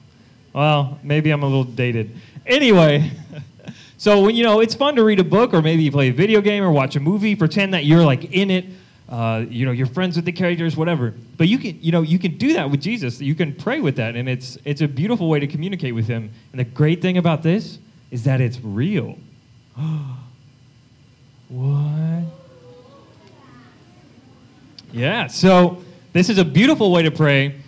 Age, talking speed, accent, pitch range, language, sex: 30-49, 195 wpm, American, 130-180 Hz, English, male